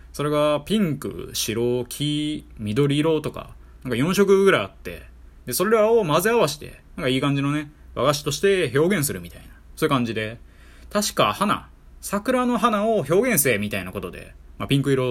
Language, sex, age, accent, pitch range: Japanese, male, 20-39, native, 95-155 Hz